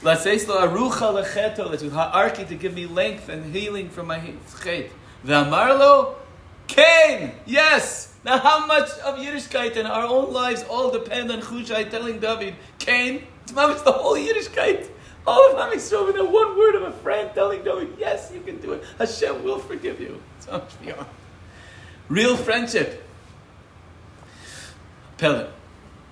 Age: 30-49